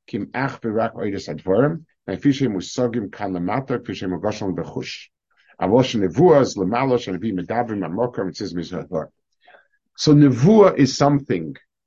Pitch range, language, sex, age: 100-140 Hz, English, male, 50-69